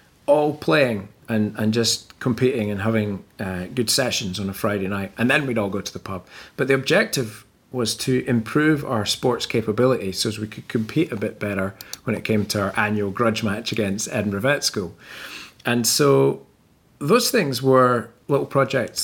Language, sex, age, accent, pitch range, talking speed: English, male, 30-49, British, 100-125 Hz, 185 wpm